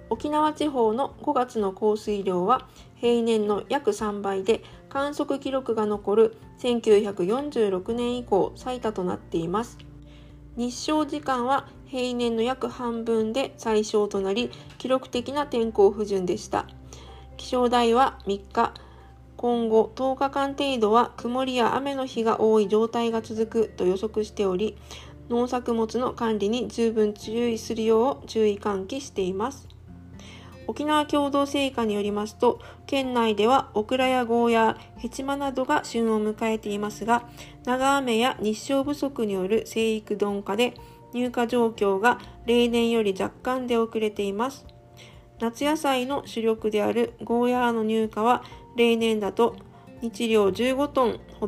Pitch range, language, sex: 210-250 Hz, Japanese, female